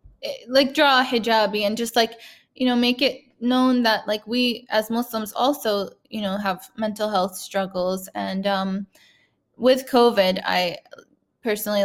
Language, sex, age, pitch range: English, female, 10-29, 195-235 Hz